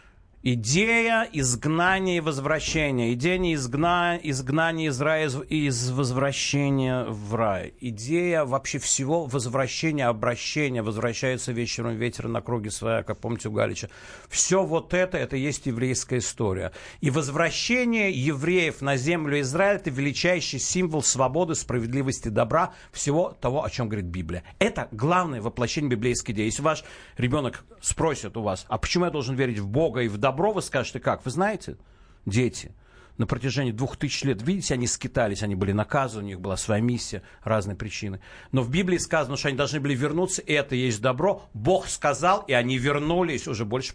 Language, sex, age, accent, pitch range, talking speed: Russian, male, 50-69, native, 115-160 Hz, 165 wpm